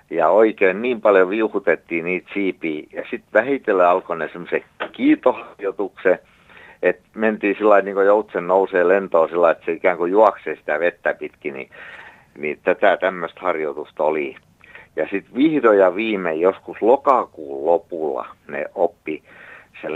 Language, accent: Finnish, native